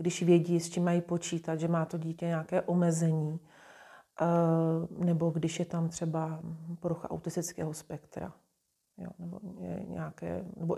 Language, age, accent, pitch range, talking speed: Czech, 40-59, native, 165-180 Hz, 135 wpm